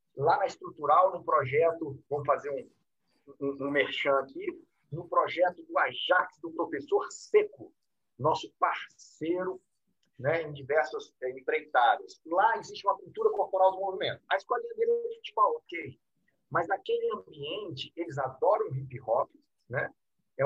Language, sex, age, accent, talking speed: Portuguese, male, 50-69, Brazilian, 145 wpm